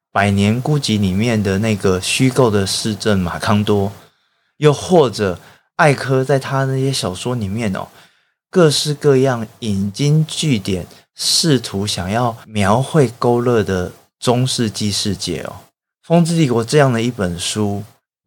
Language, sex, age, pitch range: Chinese, male, 20-39, 100-140 Hz